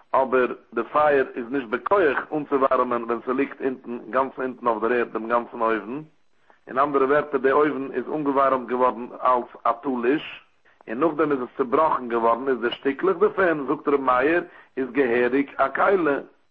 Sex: male